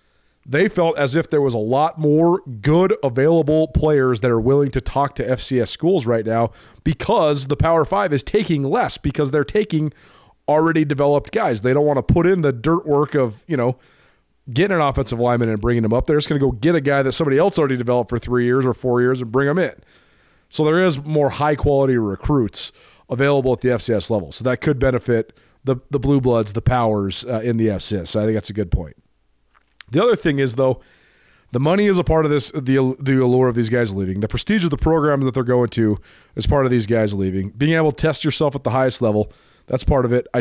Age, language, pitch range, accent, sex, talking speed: 30-49, English, 115-150 Hz, American, male, 235 wpm